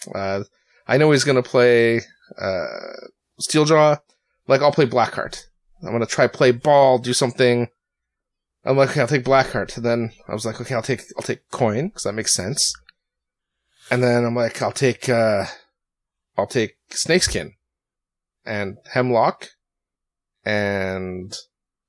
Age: 30-49